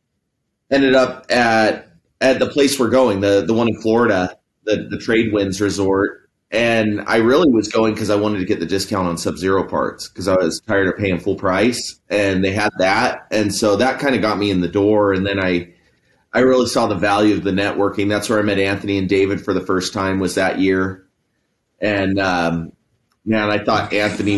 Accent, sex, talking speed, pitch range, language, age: American, male, 215 wpm, 100-130 Hz, English, 30-49